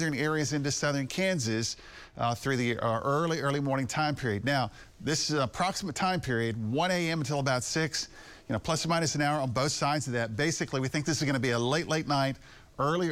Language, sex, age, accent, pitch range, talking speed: English, male, 50-69, American, 120-155 Hz, 230 wpm